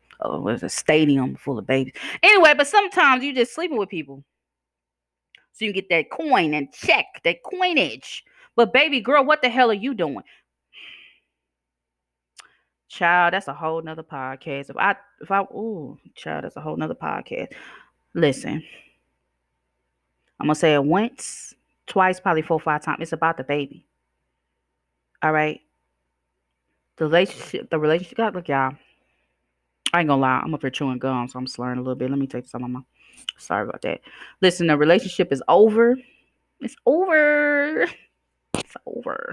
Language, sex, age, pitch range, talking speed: English, female, 20-39, 130-195 Hz, 165 wpm